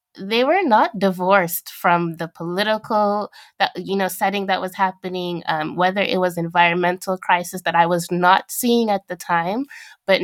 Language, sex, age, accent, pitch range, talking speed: English, female, 20-39, American, 175-200 Hz, 170 wpm